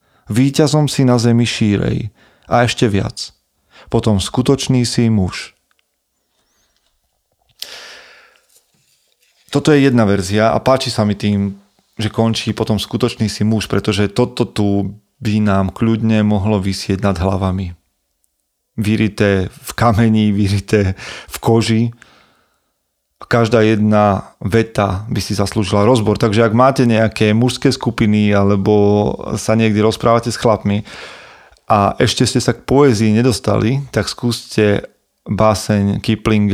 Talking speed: 120 wpm